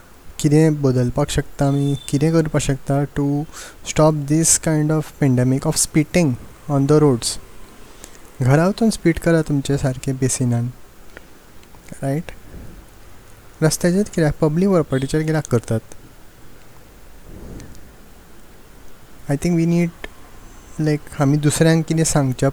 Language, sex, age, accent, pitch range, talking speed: Marathi, male, 20-39, native, 130-150 Hz, 105 wpm